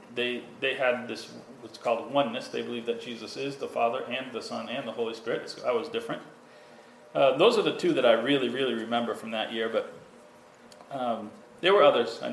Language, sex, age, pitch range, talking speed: English, male, 40-59, 120-155 Hz, 215 wpm